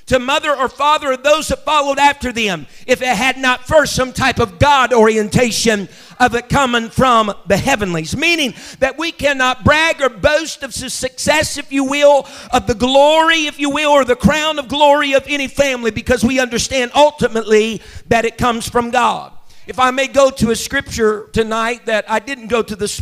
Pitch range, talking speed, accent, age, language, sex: 220-270 Hz, 195 wpm, American, 50-69, English, male